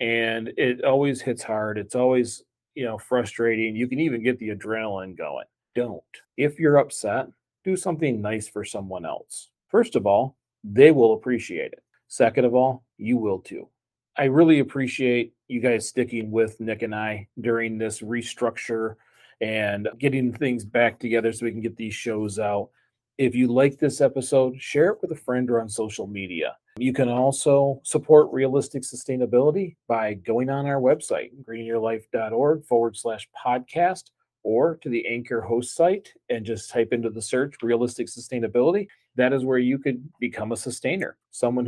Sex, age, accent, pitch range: male, 40-59, American, 115-130 Hz